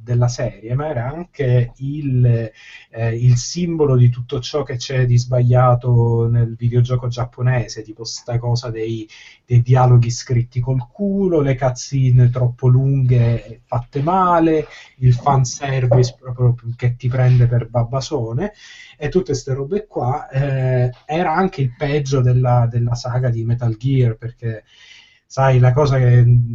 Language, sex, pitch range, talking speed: Italian, male, 120-140 Hz, 145 wpm